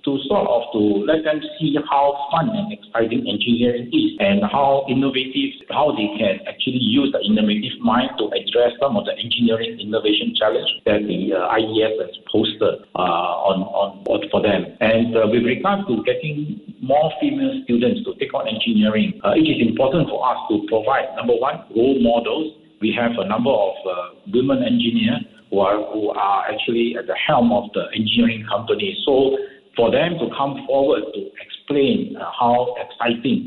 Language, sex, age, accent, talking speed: English, male, 60-79, Malaysian, 180 wpm